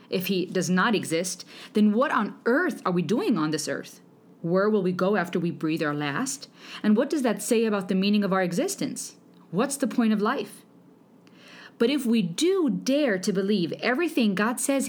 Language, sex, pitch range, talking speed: English, female, 185-240 Hz, 200 wpm